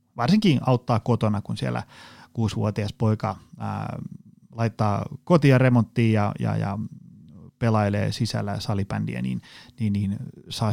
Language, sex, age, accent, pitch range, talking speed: Finnish, male, 30-49, native, 110-135 Hz, 125 wpm